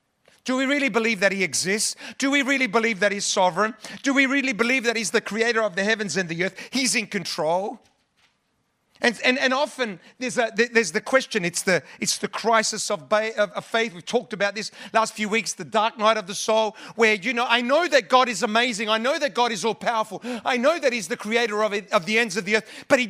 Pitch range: 205-255 Hz